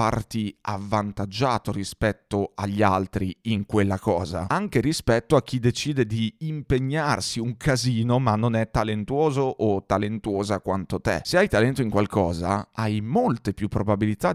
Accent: native